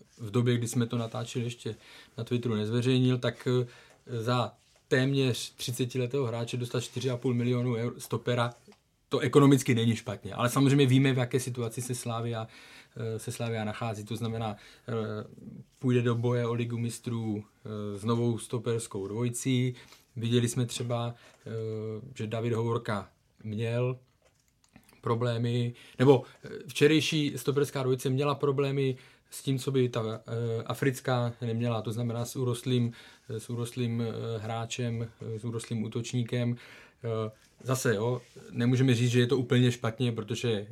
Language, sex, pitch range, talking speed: Czech, male, 115-125 Hz, 130 wpm